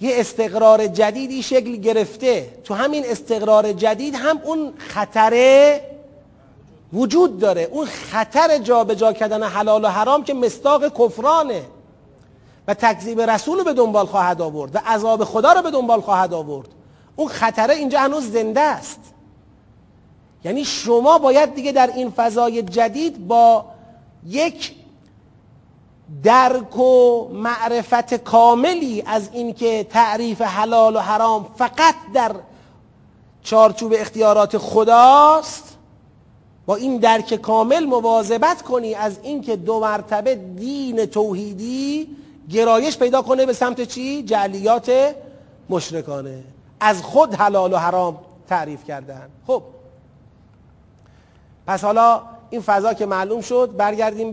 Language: Persian